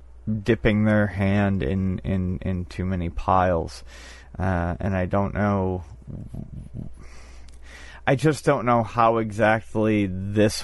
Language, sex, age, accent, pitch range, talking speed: English, male, 30-49, American, 90-110 Hz, 120 wpm